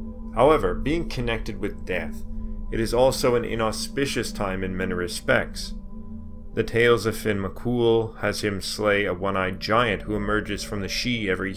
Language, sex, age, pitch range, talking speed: English, male, 30-49, 90-115 Hz, 160 wpm